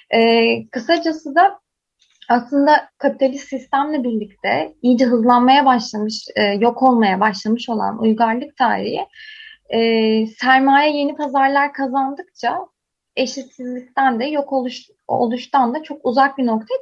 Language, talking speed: Turkish, 115 wpm